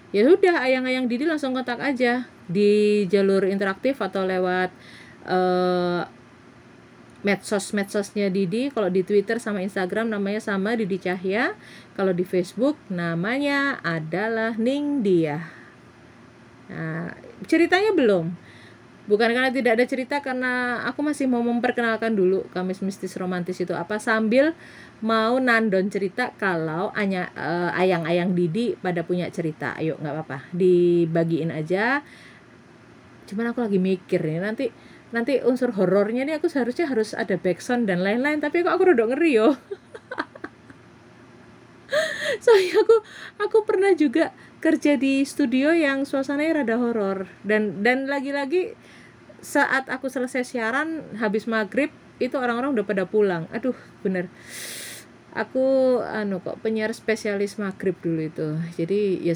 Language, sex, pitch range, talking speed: Indonesian, female, 180-260 Hz, 130 wpm